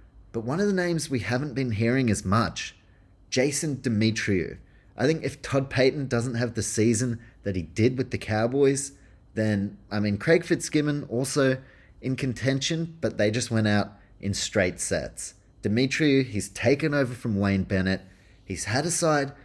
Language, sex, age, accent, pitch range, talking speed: English, male, 30-49, Australian, 100-135 Hz, 170 wpm